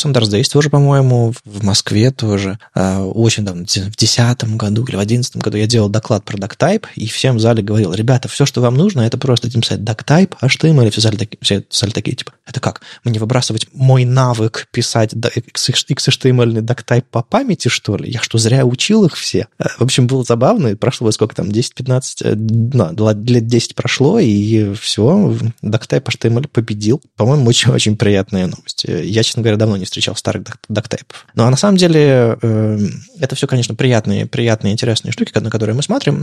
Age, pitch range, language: 20-39, 110-130 Hz, Russian